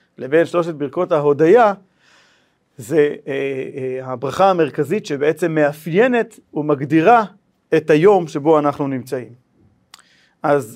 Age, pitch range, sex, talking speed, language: 40-59, 145-185 Hz, male, 100 wpm, Hebrew